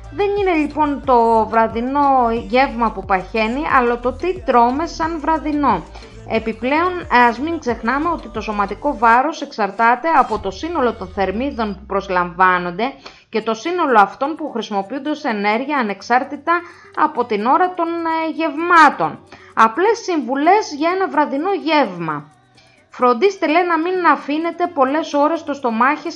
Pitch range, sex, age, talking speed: 205-295 Hz, female, 20-39, 135 wpm